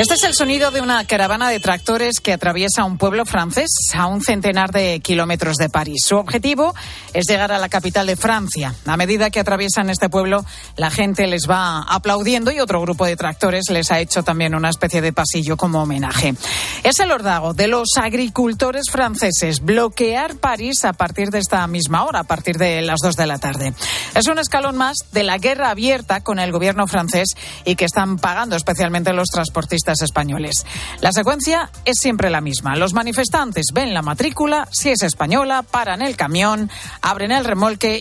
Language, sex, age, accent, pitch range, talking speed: Spanish, female, 40-59, Spanish, 170-225 Hz, 190 wpm